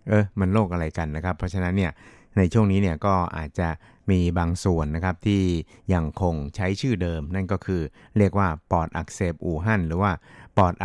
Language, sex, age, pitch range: Thai, male, 60-79, 90-105 Hz